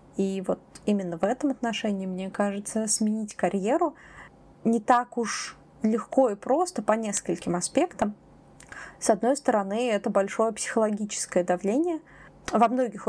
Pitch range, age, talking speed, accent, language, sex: 195-230 Hz, 20-39, 130 wpm, native, Russian, female